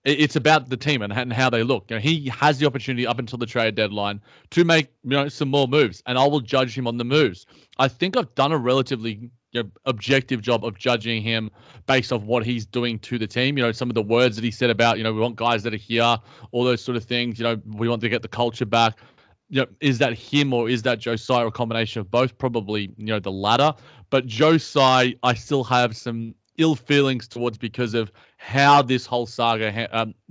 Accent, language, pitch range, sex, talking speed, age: Australian, English, 115-140 Hz, male, 240 wpm, 20-39